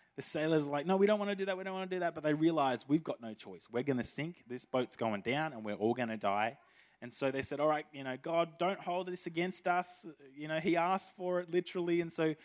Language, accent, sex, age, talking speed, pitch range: English, Australian, male, 20-39, 295 wpm, 115-175 Hz